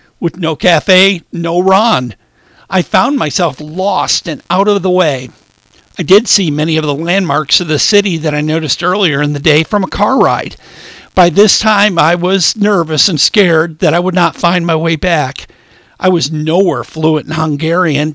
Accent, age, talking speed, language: American, 50-69, 190 wpm, English